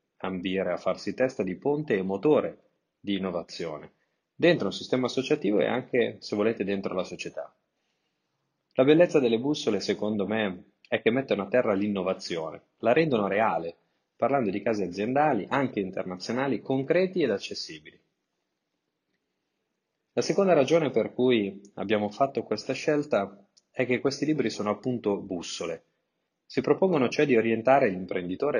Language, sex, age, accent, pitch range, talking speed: Italian, male, 30-49, native, 95-130 Hz, 140 wpm